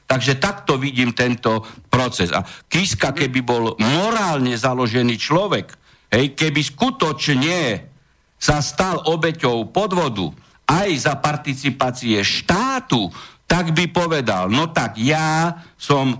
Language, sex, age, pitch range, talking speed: Slovak, male, 60-79, 125-165 Hz, 110 wpm